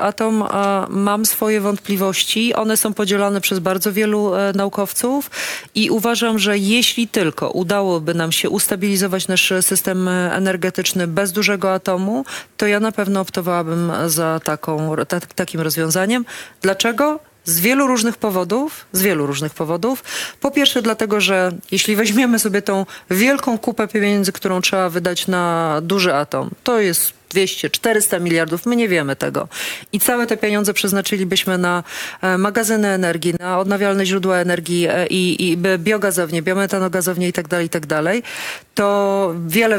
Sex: female